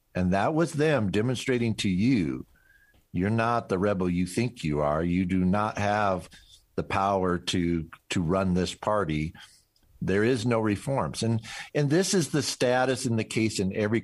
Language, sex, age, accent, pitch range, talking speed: English, male, 50-69, American, 95-115 Hz, 175 wpm